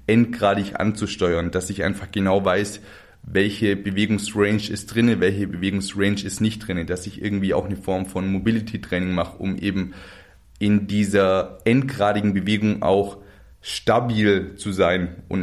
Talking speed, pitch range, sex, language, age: 140 wpm, 95-115 Hz, male, German, 20-39